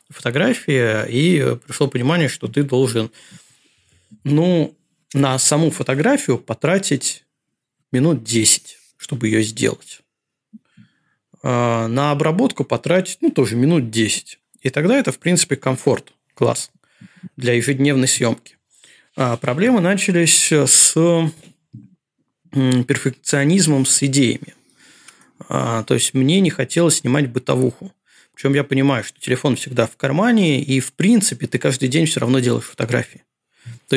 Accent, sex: native, male